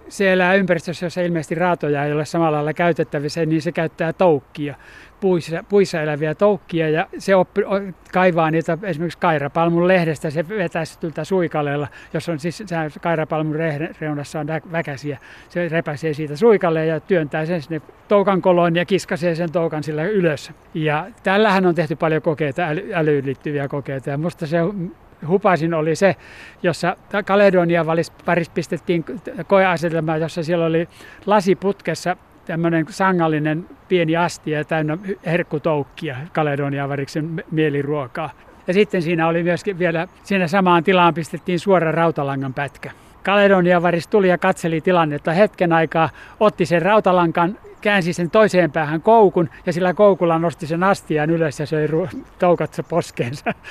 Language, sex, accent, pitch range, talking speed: Finnish, male, native, 160-180 Hz, 140 wpm